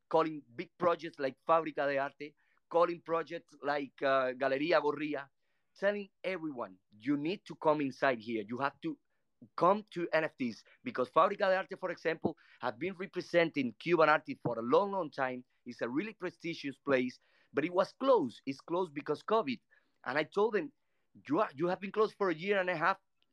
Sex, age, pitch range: male, 30-49, 135-185 Hz